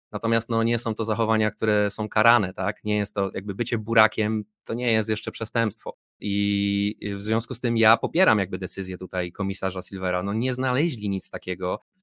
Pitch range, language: 95-110 Hz, Polish